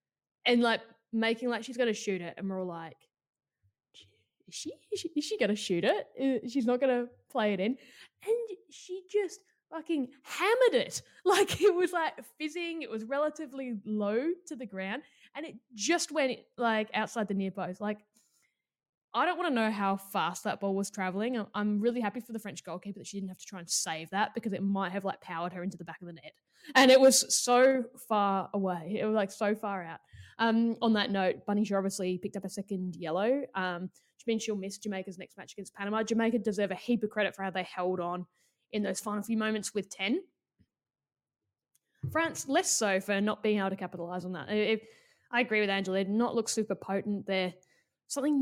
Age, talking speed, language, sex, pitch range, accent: 10-29, 210 wpm, English, female, 195-260 Hz, Australian